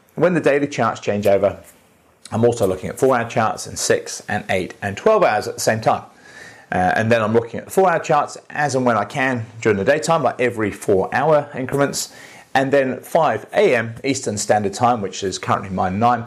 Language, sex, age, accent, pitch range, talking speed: English, male, 30-49, British, 110-140 Hz, 210 wpm